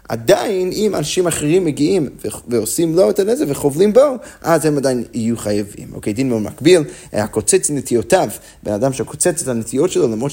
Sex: male